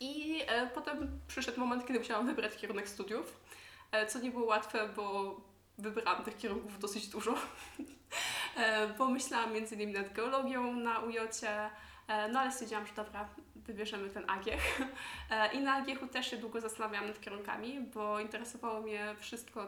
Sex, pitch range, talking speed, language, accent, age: female, 210-240 Hz, 155 wpm, Polish, native, 20-39